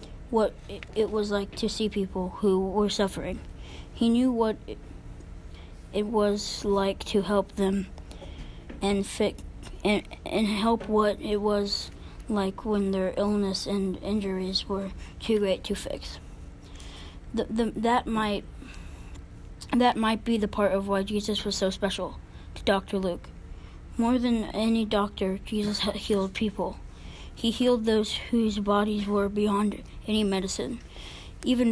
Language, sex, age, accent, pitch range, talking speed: English, female, 20-39, American, 195-220 Hz, 140 wpm